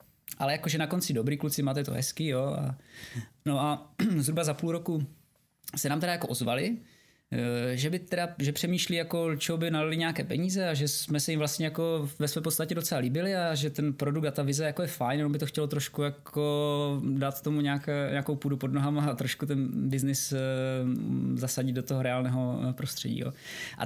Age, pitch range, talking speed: 20-39, 125-150 Hz, 190 wpm